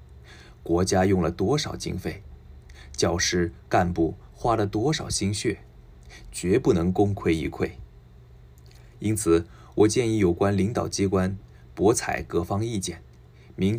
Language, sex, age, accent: Japanese, male, 20-39, Chinese